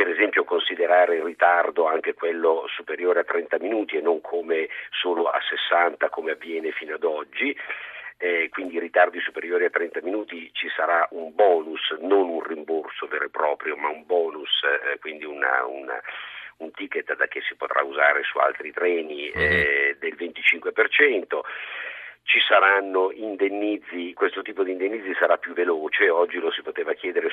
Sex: male